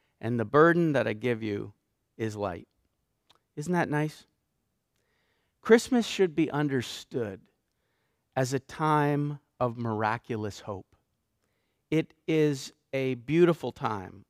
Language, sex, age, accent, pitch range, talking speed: English, male, 50-69, American, 120-165 Hz, 115 wpm